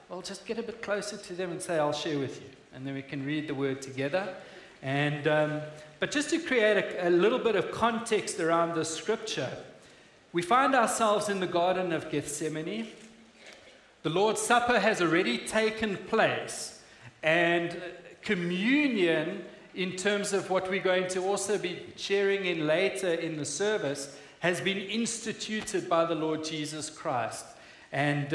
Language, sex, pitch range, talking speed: English, male, 155-215 Hz, 165 wpm